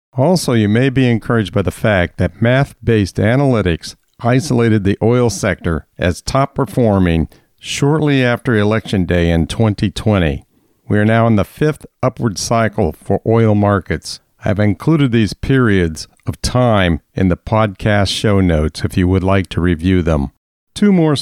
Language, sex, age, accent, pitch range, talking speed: English, male, 50-69, American, 95-125 Hz, 155 wpm